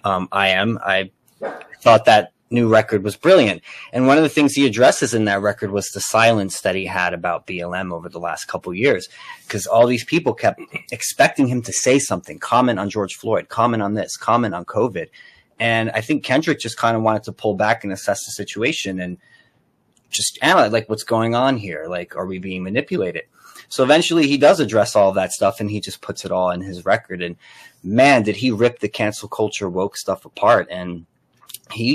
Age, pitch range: 30-49, 95-125 Hz